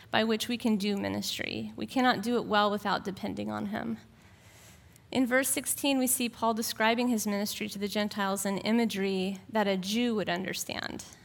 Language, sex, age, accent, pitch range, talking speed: English, female, 20-39, American, 200-250 Hz, 180 wpm